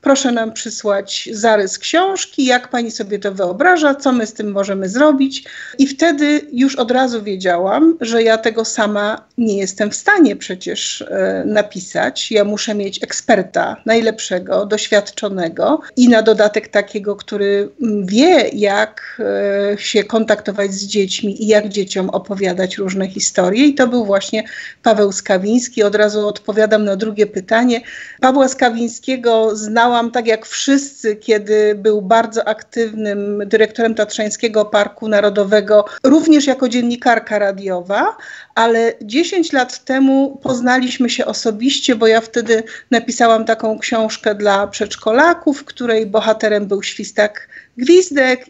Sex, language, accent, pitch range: female, Polish, native, 210-260 Hz